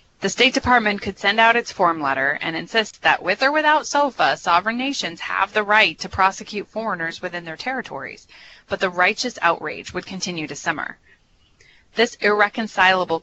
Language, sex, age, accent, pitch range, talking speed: English, female, 20-39, American, 165-220 Hz, 170 wpm